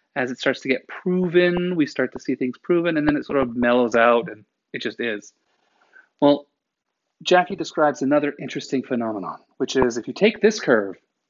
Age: 30-49